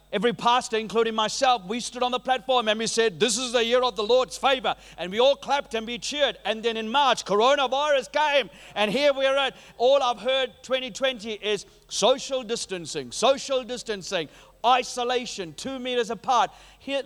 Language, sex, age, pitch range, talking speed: English, male, 40-59, 220-265 Hz, 185 wpm